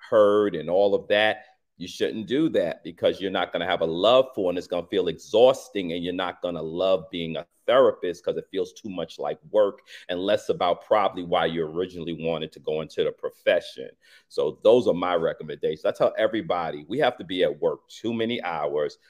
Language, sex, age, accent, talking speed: English, male, 40-59, American, 220 wpm